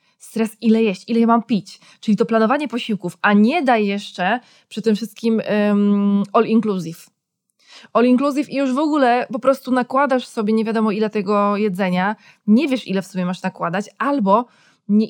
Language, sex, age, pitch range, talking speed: Polish, female, 20-39, 200-240 Hz, 165 wpm